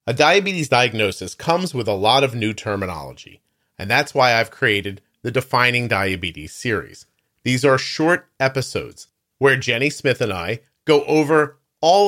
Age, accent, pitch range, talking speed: 40-59, American, 115-150 Hz, 155 wpm